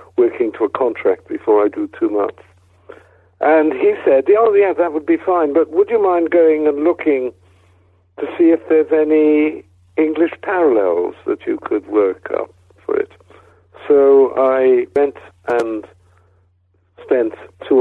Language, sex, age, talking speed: English, male, 60-79, 150 wpm